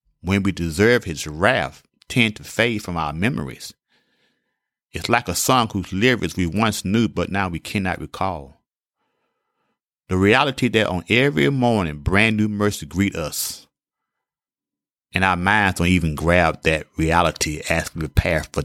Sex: male